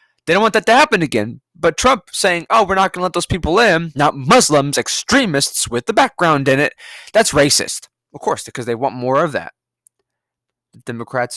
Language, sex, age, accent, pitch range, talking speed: English, male, 20-39, American, 125-205 Hz, 200 wpm